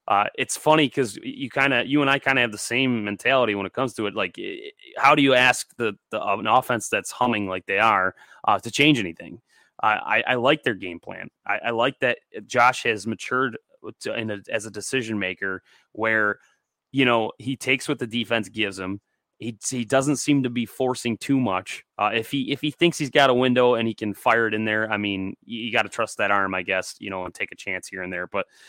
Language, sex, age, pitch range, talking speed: English, male, 20-39, 100-125 Hz, 245 wpm